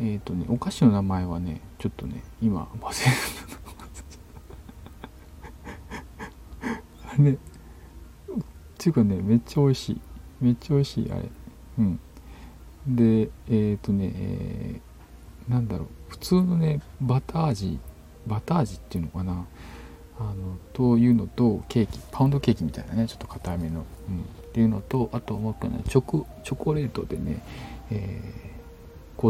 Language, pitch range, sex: Japanese, 80-115 Hz, male